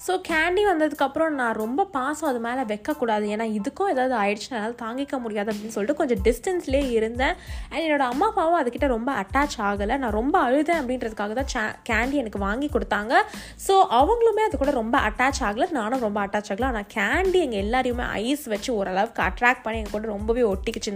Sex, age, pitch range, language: female, 20-39, 215-290 Hz, Tamil